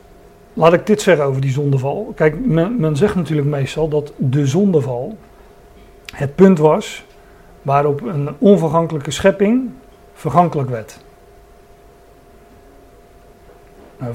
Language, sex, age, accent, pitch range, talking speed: Dutch, male, 40-59, Dutch, 140-175 Hz, 110 wpm